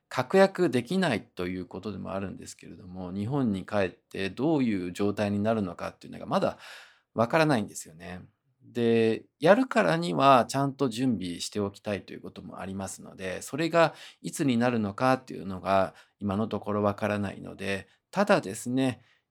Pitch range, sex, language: 95-135 Hz, male, Japanese